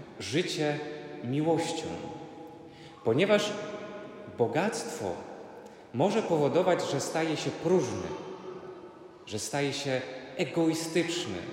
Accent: native